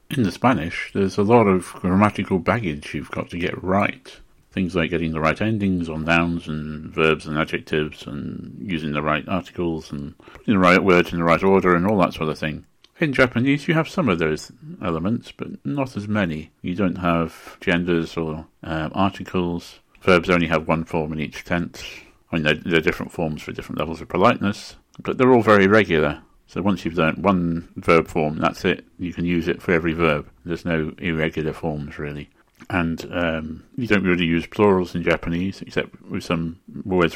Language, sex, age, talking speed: English, male, 50-69, 200 wpm